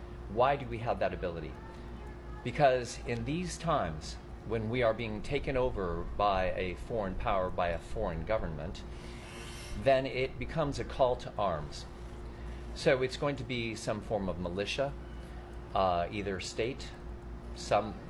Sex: male